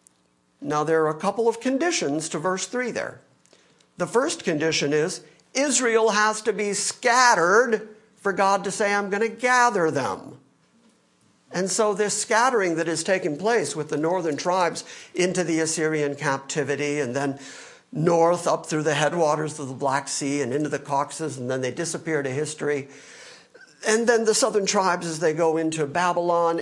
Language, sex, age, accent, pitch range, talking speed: English, male, 50-69, American, 155-215 Hz, 170 wpm